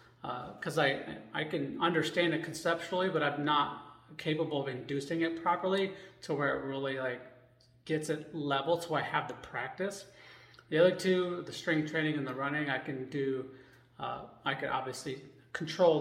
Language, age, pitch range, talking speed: English, 30-49, 135-165 Hz, 170 wpm